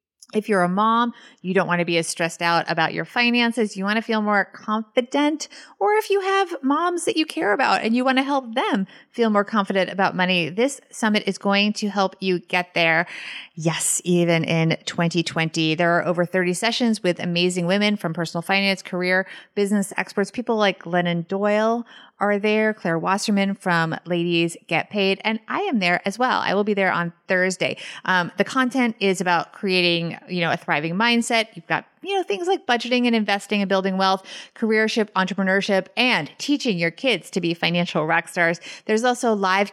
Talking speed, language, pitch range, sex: 195 wpm, English, 175-225 Hz, female